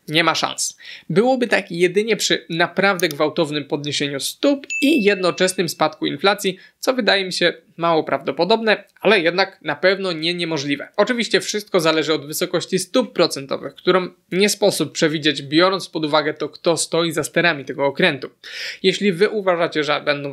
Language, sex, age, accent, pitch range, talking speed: Polish, male, 20-39, native, 155-200 Hz, 155 wpm